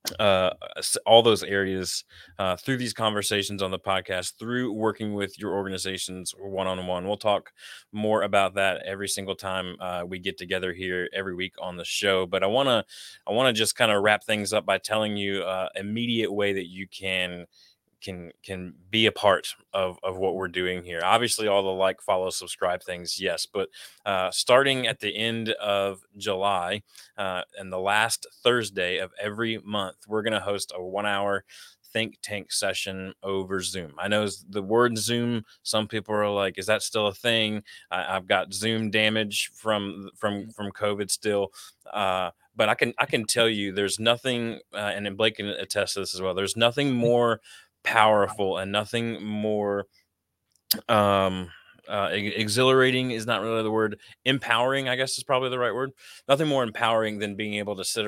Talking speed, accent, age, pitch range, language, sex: 185 wpm, American, 20-39, 95-110 Hz, English, male